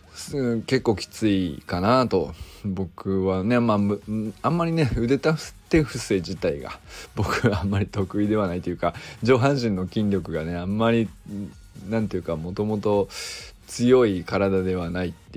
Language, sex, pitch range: Japanese, male, 95-120 Hz